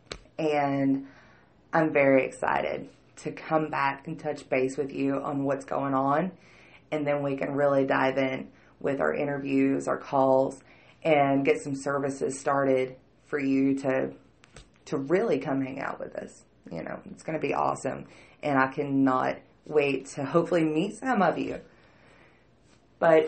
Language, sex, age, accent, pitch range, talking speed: English, female, 30-49, American, 140-170 Hz, 155 wpm